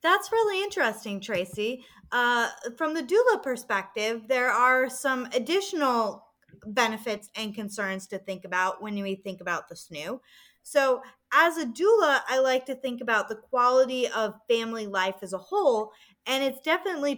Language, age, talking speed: English, 20-39, 155 wpm